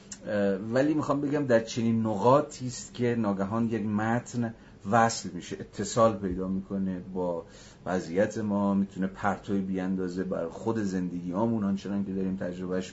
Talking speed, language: 135 wpm, Persian